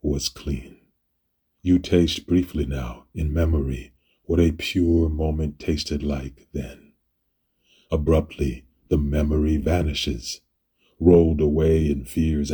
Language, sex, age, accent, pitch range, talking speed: English, male, 40-59, American, 70-80 Hz, 110 wpm